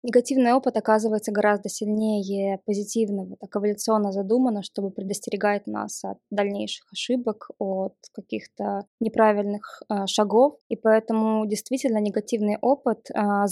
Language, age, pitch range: Russian, 20-39, 205-235 Hz